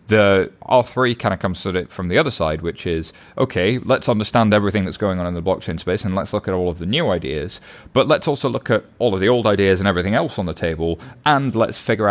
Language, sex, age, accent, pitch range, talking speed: English, male, 30-49, British, 90-110 Hz, 260 wpm